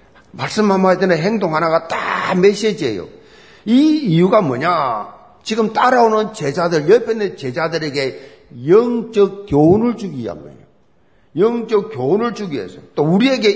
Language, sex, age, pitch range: Korean, male, 50-69, 190-240 Hz